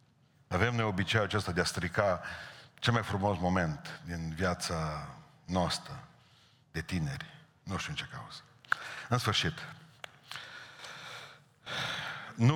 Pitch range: 90-135 Hz